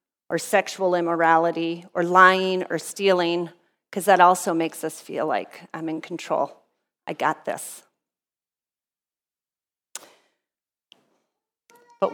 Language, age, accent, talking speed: English, 40-59, American, 105 wpm